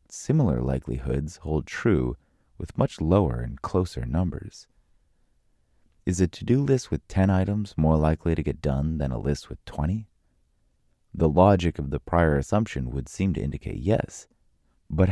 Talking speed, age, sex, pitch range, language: 155 wpm, 30-49, male, 75-100 Hz, English